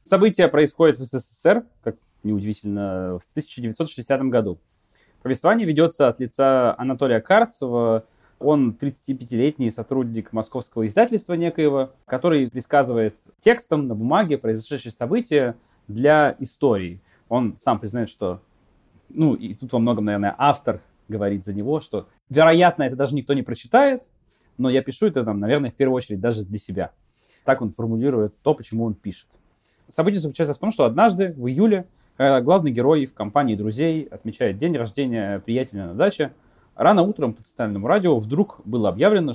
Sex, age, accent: male, 20-39, native